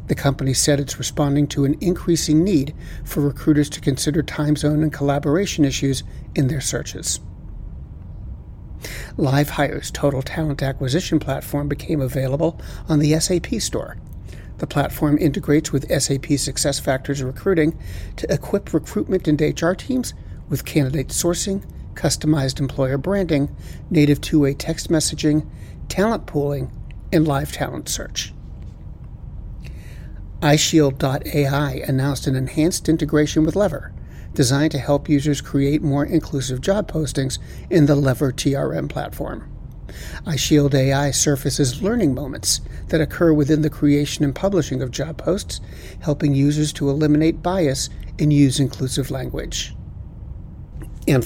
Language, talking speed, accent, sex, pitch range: English, 125 wpm, American, male, 135-155 Hz